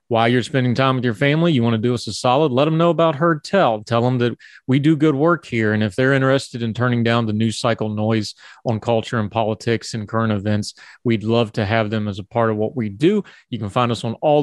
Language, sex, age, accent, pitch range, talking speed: English, male, 30-49, American, 110-130 Hz, 265 wpm